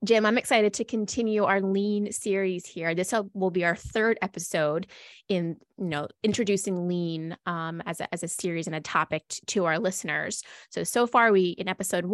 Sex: female